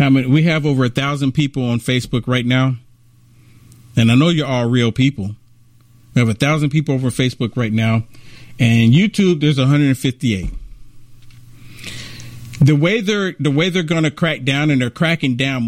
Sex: male